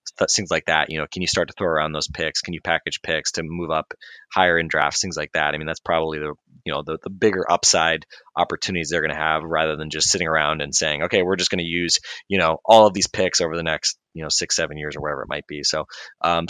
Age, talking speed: 20-39, 275 wpm